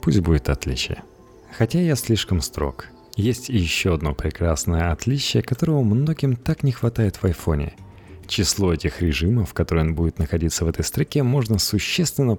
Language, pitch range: Russian, 85-110 Hz